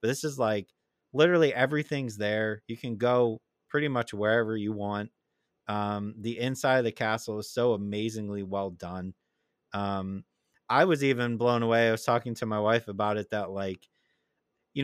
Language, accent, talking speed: English, American, 175 wpm